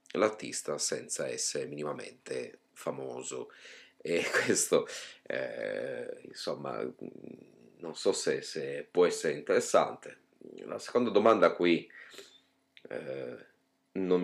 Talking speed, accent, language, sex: 95 wpm, native, Italian, male